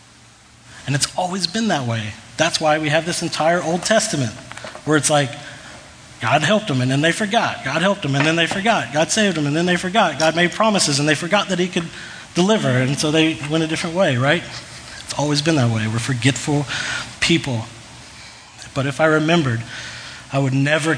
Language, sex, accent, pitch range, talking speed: English, male, American, 125-160 Hz, 205 wpm